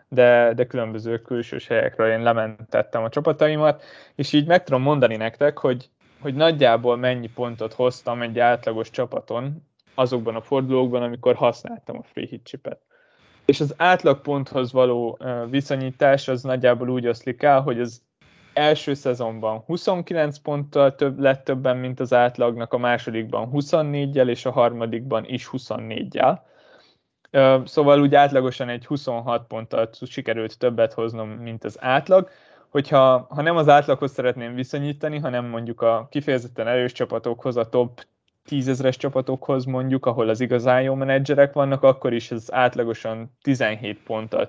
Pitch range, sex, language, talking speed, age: 115-140 Hz, male, Hungarian, 140 wpm, 20-39